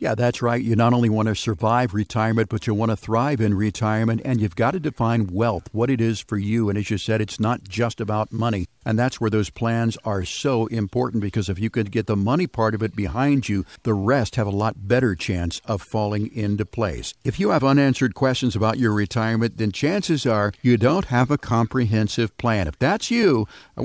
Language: English